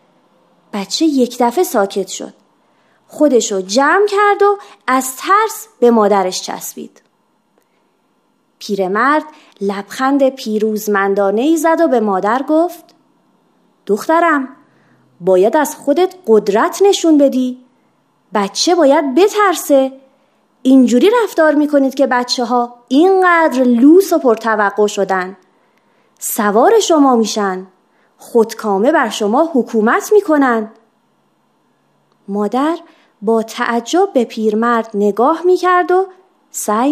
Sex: female